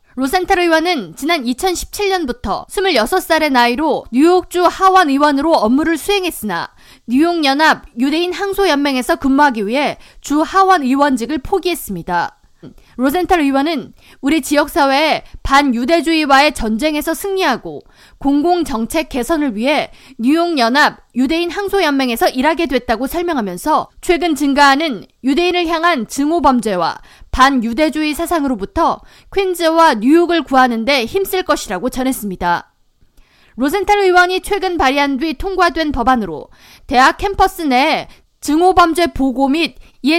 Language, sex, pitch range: Korean, female, 265-350 Hz